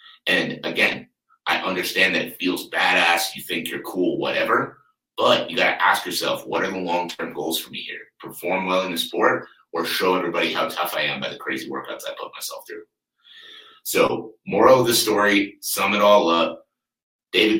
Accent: American